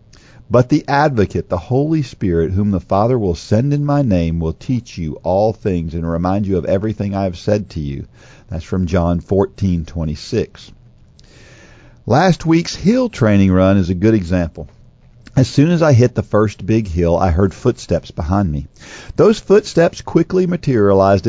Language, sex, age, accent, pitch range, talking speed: English, male, 50-69, American, 90-135 Hz, 170 wpm